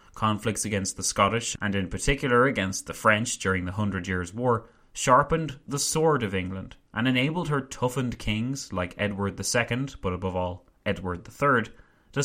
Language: English